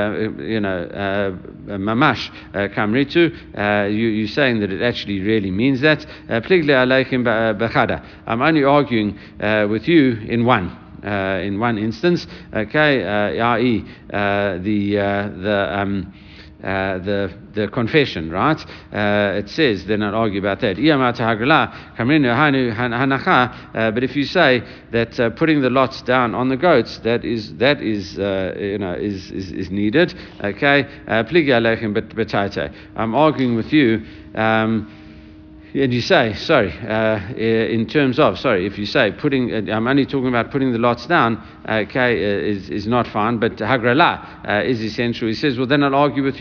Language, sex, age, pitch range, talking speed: English, male, 60-79, 100-125 Hz, 155 wpm